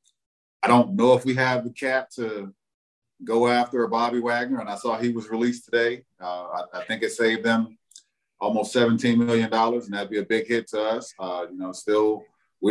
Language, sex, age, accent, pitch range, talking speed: English, male, 40-59, American, 95-120 Hz, 210 wpm